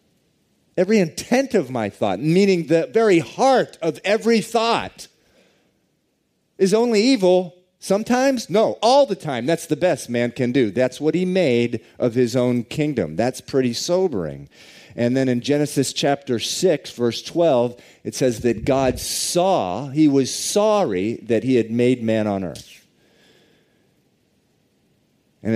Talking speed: 145 wpm